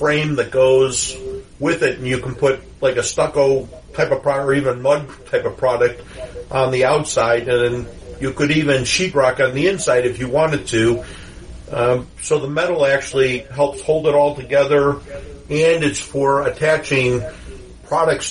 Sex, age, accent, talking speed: male, 50-69, American, 165 wpm